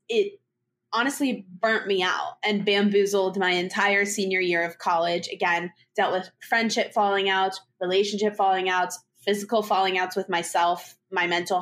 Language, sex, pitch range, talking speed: English, female, 185-225 Hz, 150 wpm